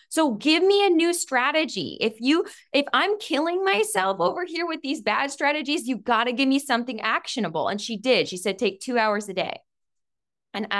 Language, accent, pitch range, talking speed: English, American, 200-285 Hz, 200 wpm